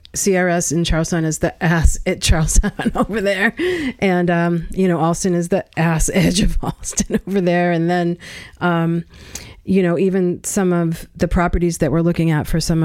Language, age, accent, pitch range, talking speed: English, 30-49, American, 165-190 Hz, 180 wpm